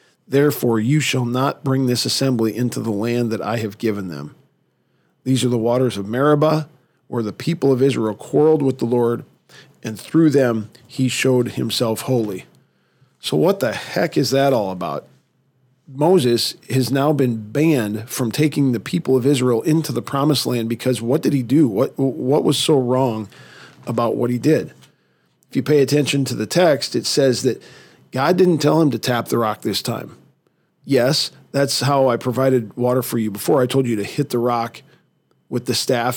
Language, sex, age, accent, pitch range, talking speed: English, male, 40-59, American, 120-140 Hz, 185 wpm